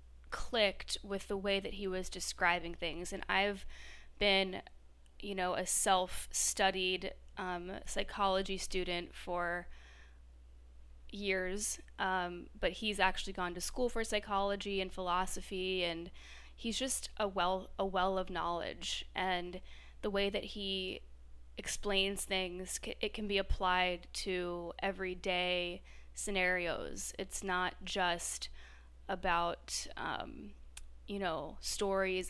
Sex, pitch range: female, 175-195 Hz